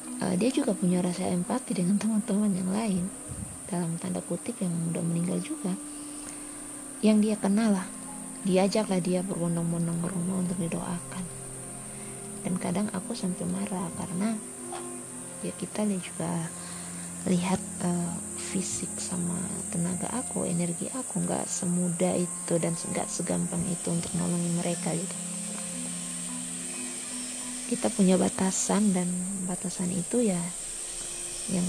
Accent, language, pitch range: native, Indonesian, 170-195 Hz